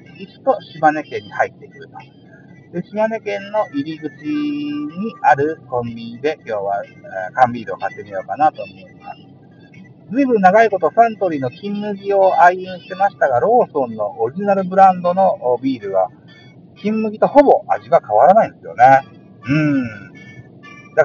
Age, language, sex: 50-69, Japanese, male